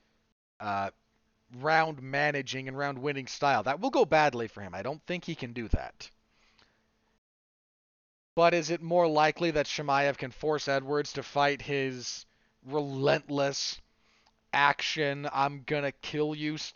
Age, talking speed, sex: 30-49, 120 wpm, male